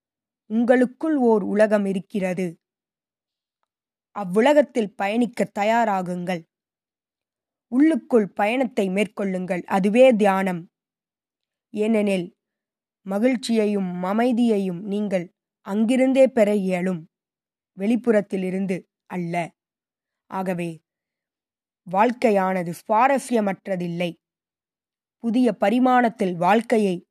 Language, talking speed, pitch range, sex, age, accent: Tamil, 60 wpm, 190-250 Hz, female, 20-39, native